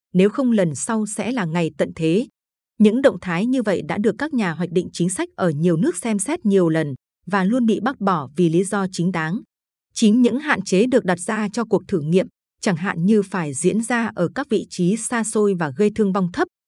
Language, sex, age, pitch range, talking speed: Vietnamese, female, 20-39, 185-230 Hz, 240 wpm